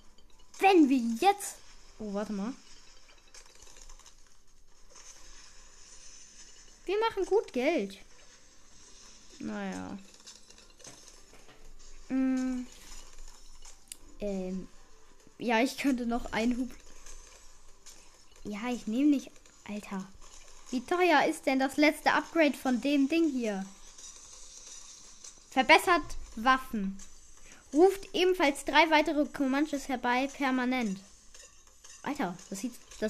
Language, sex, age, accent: German, female, 10-29, German